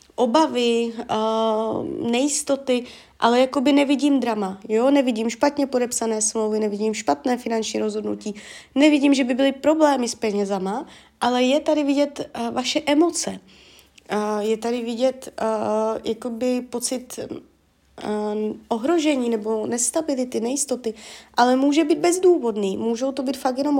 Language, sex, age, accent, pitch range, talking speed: Czech, female, 20-39, native, 230-280 Hz, 110 wpm